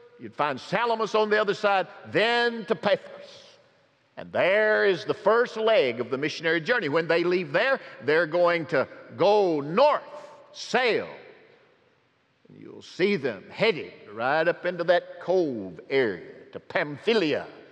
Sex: male